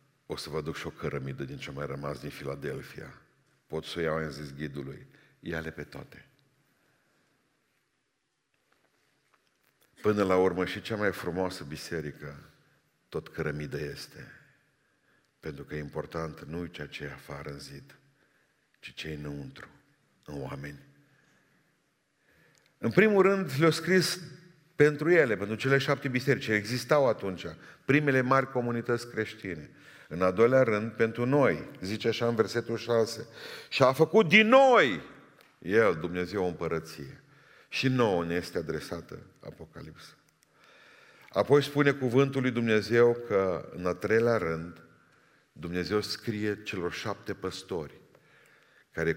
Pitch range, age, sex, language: 80-125 Hz, 50-69, male, Romanian